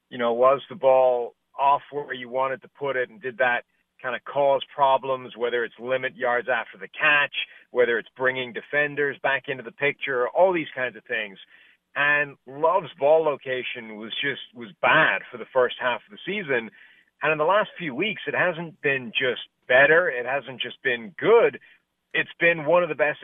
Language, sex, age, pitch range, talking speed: English, male, 40-59, 125-155 Hz, 195 wpm